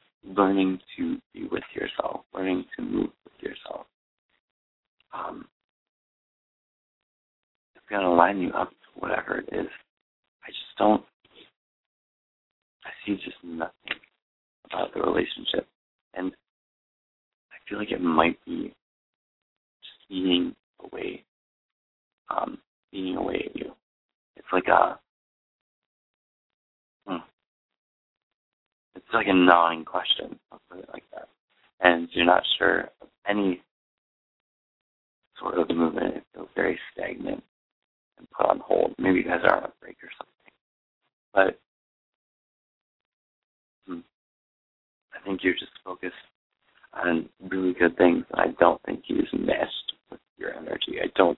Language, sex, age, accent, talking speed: English, male, 50-69, American, 120 wpm